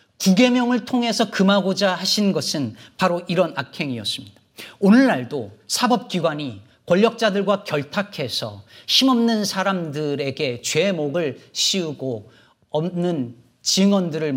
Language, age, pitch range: Korean, 40-59, 120-205 Hz